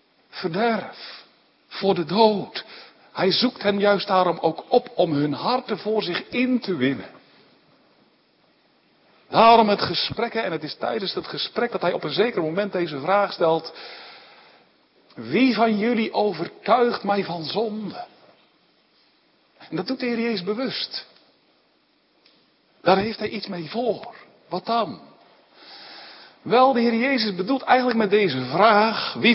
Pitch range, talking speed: 195-250 Hz, 140 wpm